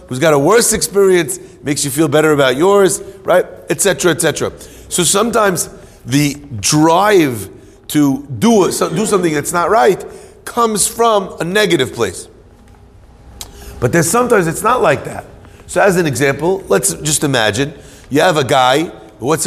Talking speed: 155 wpm